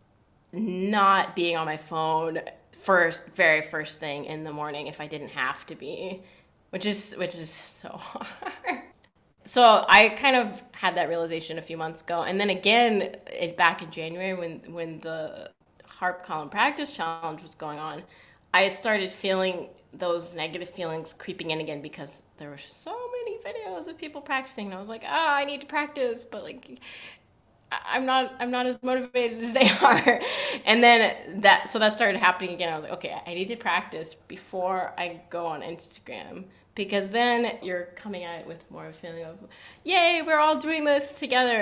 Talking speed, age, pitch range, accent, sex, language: 185 wpm, 20-39, 165-235 Hz, American, female, English